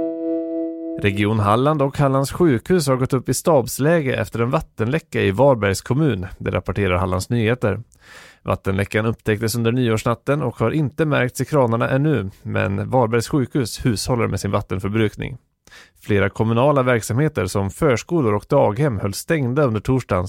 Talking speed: 145 wpm